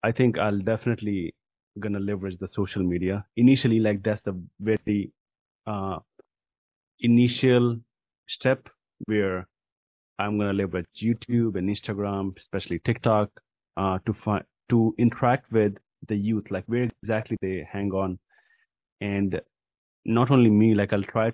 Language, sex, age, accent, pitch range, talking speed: English, male, 30-49, Indian, 95-115 Hz, 130 wpm